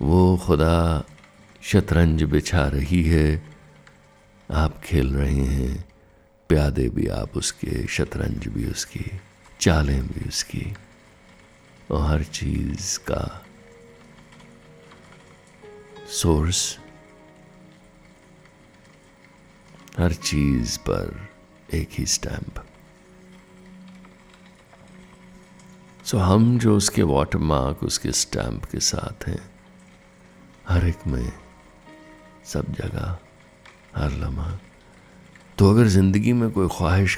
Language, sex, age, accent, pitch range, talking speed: Hindi, male, 60-79, native, 75-105 Hz, 85 wpm